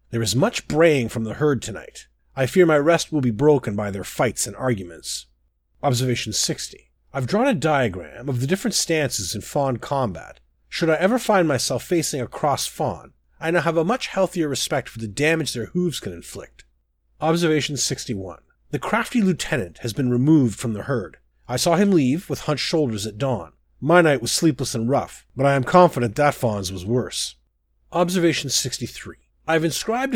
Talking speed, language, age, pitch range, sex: 190 wpm, English, 30-49, 120-170 Hz, male